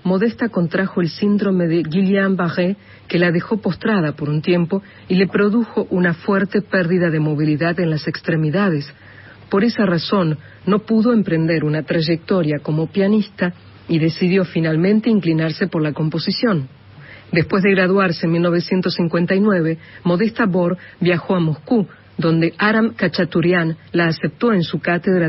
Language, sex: Spanish, female